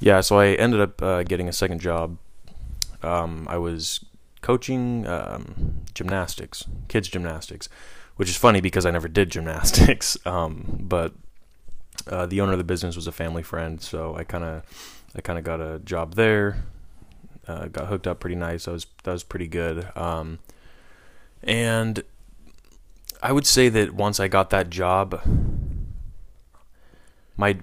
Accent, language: American, English